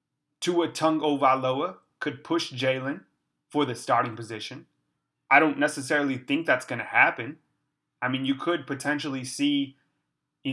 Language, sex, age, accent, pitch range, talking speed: English, male, 30-49, American, 125-150 Hz, 135 wpm